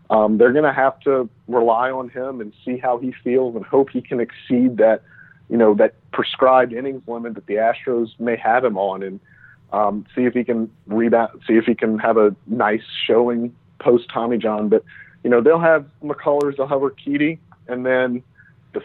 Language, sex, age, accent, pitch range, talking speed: English, male, 40-59, American, 105-125 Hz, 200 wpm